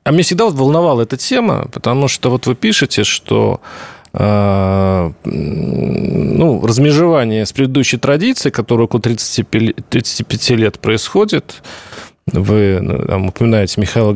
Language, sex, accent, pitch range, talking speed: Russian, male, native, 115-175 Hz, 105 wpm